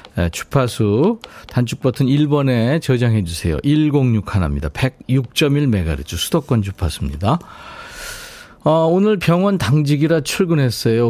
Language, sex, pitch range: Korean, male, 115-160 Hz